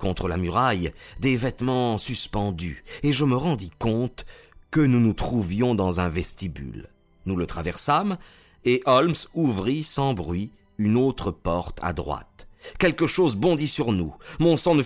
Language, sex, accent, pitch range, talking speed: French, male, French, 85-125 Hz, 160 wpm